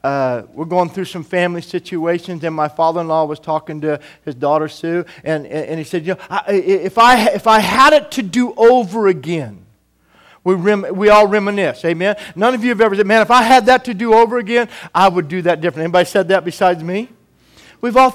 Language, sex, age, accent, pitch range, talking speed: English, male, 40-59, American, 180-240 Hz, 220 wpm